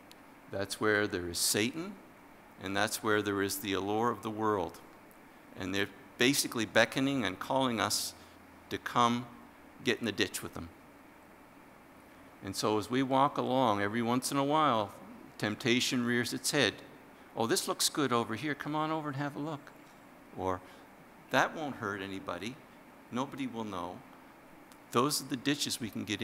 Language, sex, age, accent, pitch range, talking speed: English, male, 50-69, American, 105-145 Hz, 165 wpm